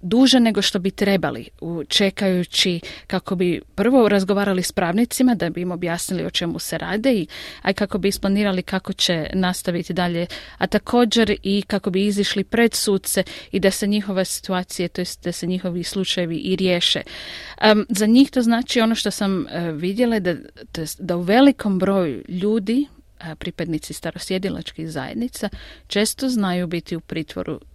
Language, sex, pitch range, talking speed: Croatian, female, 180-215 Hz, 160 wpm